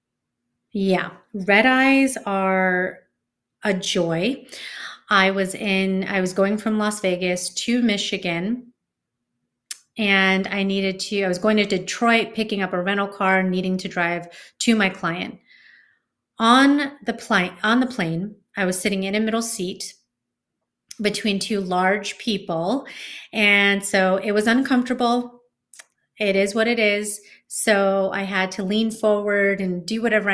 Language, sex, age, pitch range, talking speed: English, female, 30-49, 180-215 Hz, 145 wpm